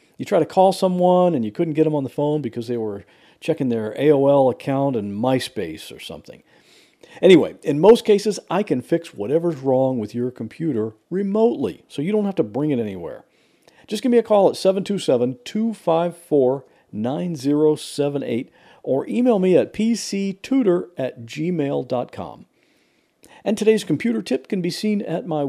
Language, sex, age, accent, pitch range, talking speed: English, male, 50-69, American, 135-200 Hz, 160 wpm